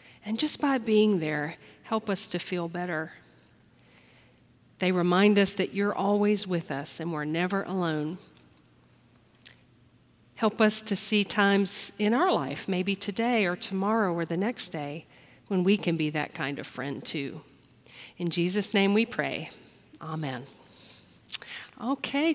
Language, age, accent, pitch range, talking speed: English, 40-59, American, 180-245 Hz, 145 wpm